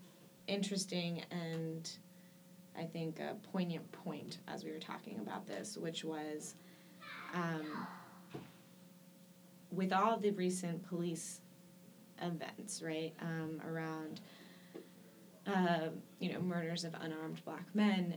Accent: American